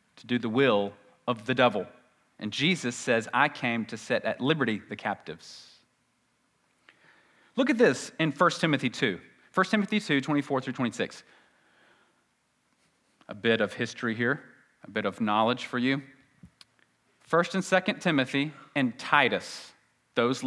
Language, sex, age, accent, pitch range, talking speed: English, male, 40-59, American, 120-155 Hz, 140 wpm